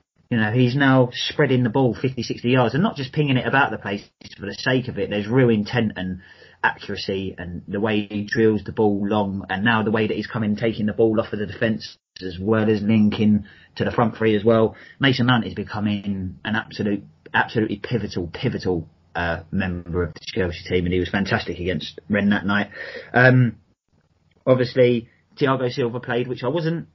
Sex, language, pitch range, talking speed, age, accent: male, English, 105-125 Hz, 205 wpm, 30-49, British